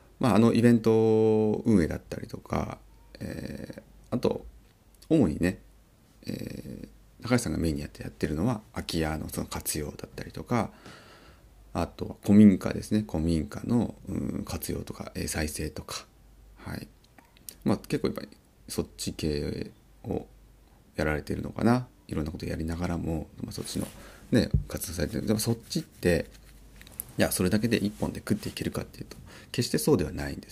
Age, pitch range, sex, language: 30-49, 80-110 Hz, male, Japanese